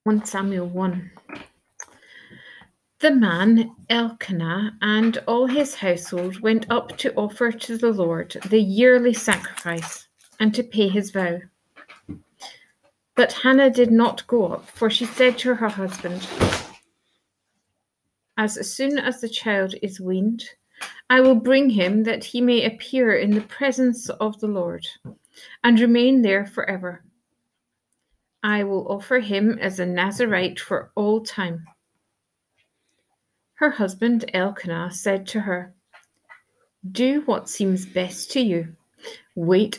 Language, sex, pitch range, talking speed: English, female, 190-240 Hz, 130 wpm